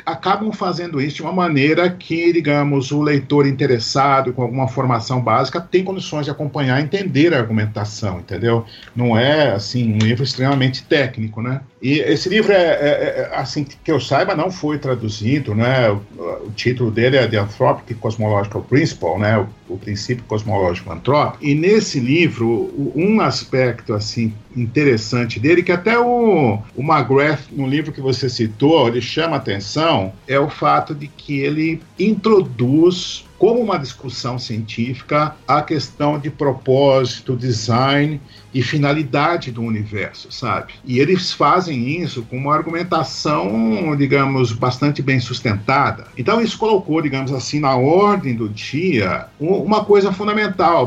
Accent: Brazilian